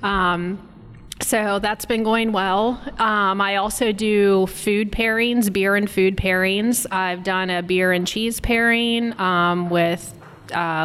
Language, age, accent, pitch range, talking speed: English, 20-39, American, 180-200 Hz, 145 wpm